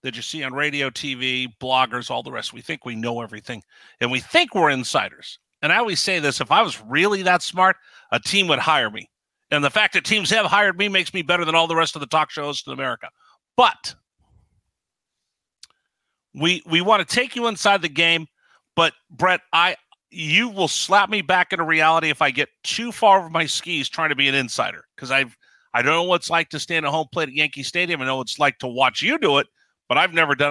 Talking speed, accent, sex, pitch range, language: 235 wpm, American, male, 140-195 Hz, English